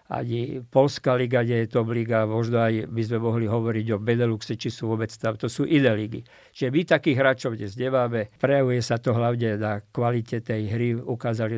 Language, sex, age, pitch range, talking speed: Slovak, male, 50-69, 115-130 Hz, 195 wpm